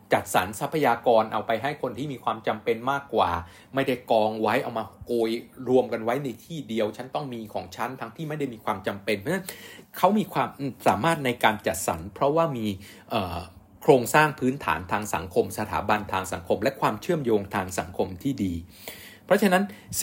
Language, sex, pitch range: Thai, male, 100-135 Hz